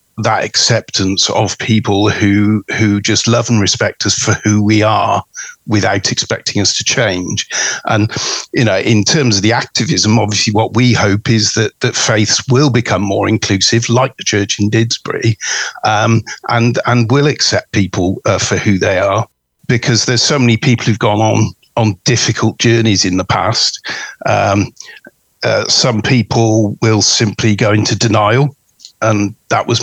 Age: 50-69